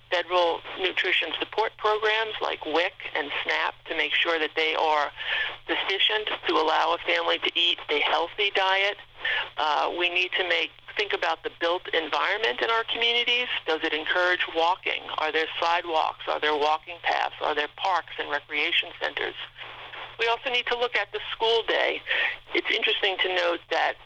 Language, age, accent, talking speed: English, 50-69, American, 170 wpm